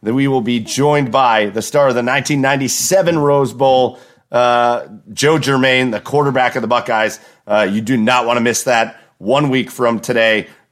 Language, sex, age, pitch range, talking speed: English, male, 40-59, 120-140 Hz, 185 wpm